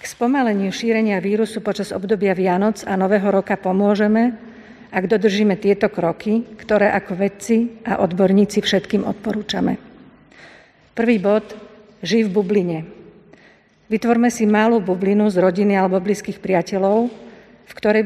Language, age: Slovak, 50-69